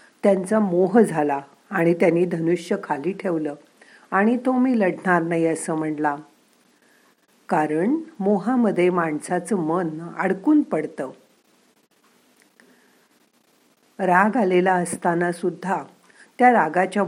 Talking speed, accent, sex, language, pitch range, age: 95 wpm, native, female, Marathi, 165-210 Hz, 50-69